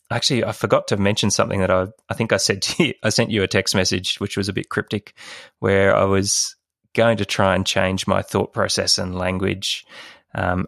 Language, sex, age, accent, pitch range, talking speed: English, male, 20-39, Australian, 90-100 Hz, 200 wpm